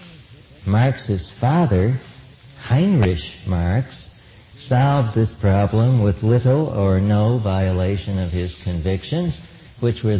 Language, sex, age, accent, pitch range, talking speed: English, male, 60-79, American, 100-130 Hz, 100 wpm